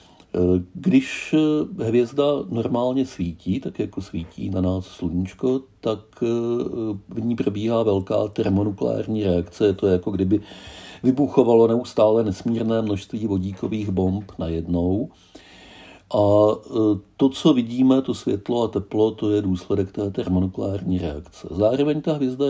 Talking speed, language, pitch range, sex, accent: 120 wpm, Czech, 95-130 Hz, male, native